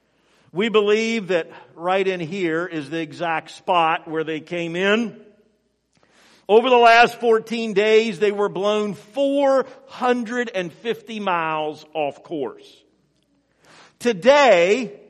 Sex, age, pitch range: male, 50-69, 165-245 Hz